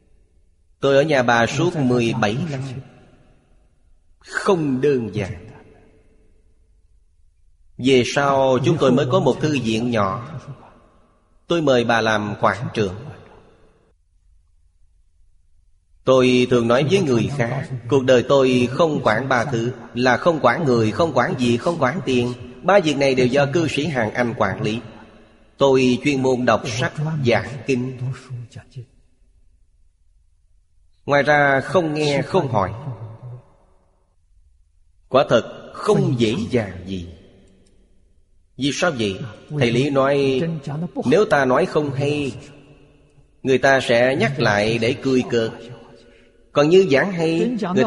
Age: 30-49